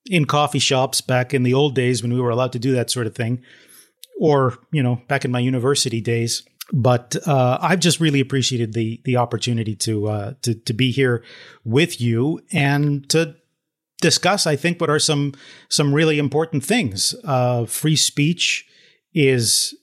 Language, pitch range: English, 125-155 Hz